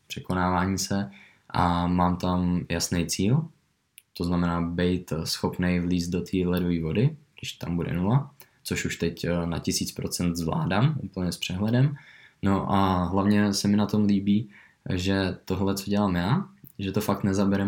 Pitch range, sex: 90-105 Hz, male